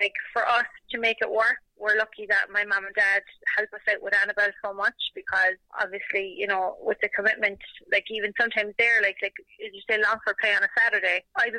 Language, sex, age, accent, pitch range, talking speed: English, female, 20-39, Irish, 200-225 Hz, 225 wpm